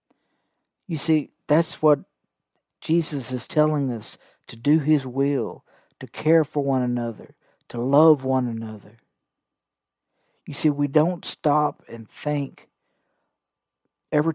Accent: American